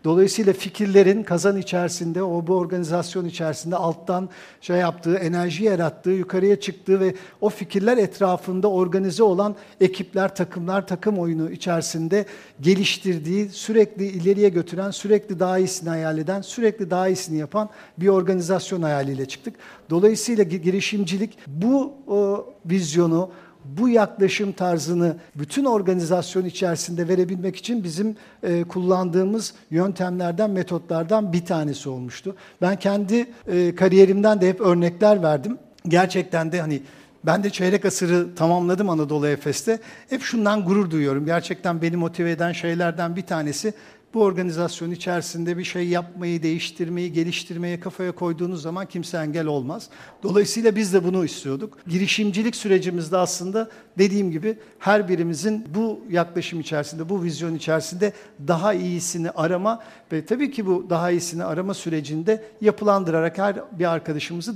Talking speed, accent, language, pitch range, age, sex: 130 wpm, native, Turkish, 170-200 Hz, 50-69, male